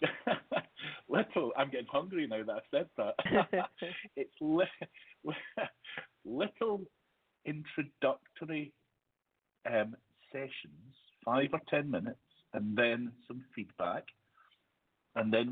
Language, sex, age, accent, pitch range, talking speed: English, male, 60-79, British, 105-145 Hz, 95 wpm